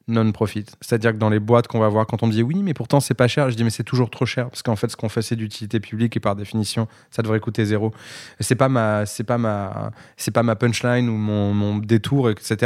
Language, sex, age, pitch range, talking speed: French, male, 20-39, 105-120 Hz, 265 wpm